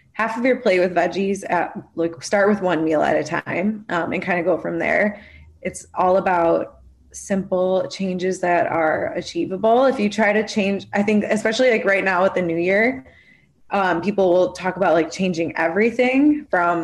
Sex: female